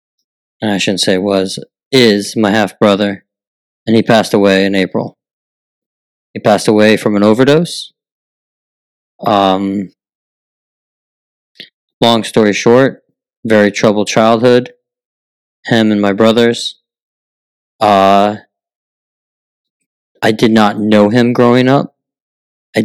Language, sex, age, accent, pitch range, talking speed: English, male, 30-49, American, 100-120 Hz, 105 wpm